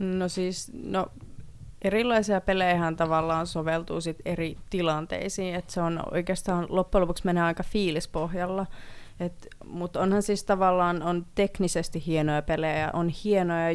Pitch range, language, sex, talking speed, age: 155-180 Hz, Finnish, female, 125 wpm, 30-49